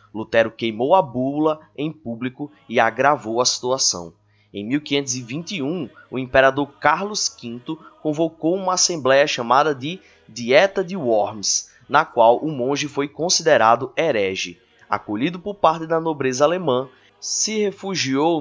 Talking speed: 125 wpm